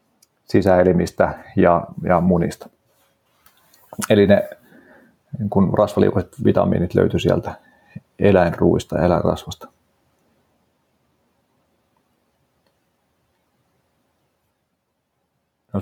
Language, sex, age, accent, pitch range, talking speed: Finnish, male, 30-49, native, 90-105 Hz, 55 wpm